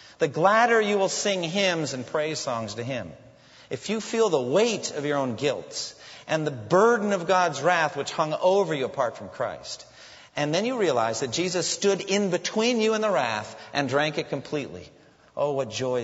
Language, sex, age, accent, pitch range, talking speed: English, male, 40-59, American, 125-175 Hz, 200 wpm